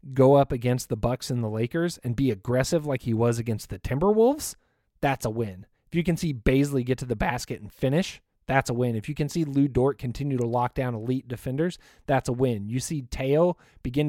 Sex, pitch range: male, 120-150 Hz